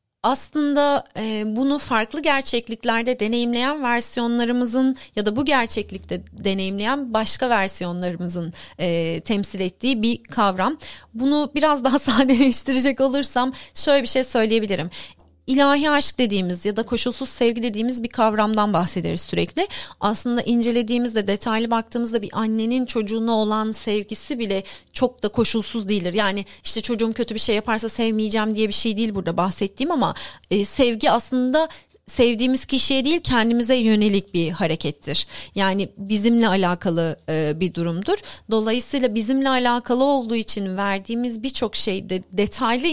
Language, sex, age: Turkish, female, 30-49